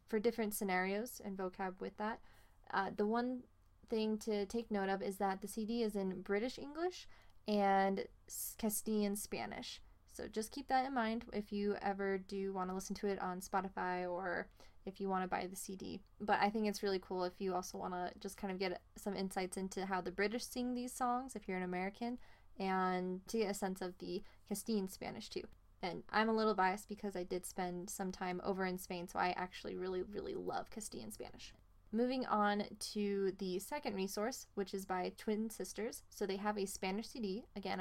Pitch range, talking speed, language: 185-215 Hz, 205 wpm, English